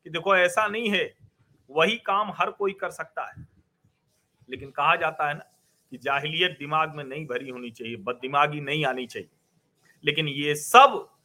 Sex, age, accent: male, 40-59, native